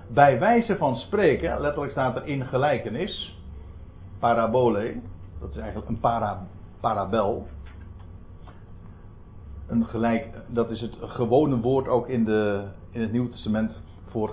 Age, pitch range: 60-79, 95-120 Hz